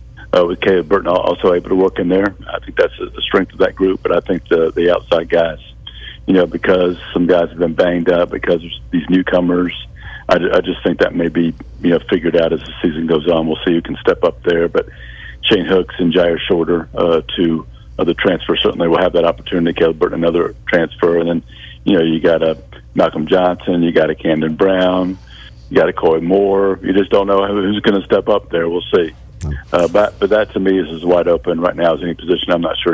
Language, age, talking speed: English, 50-69, 240 wpm